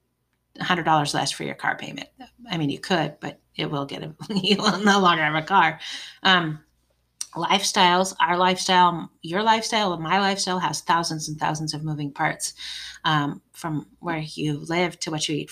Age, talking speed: 30-49, 180 wpm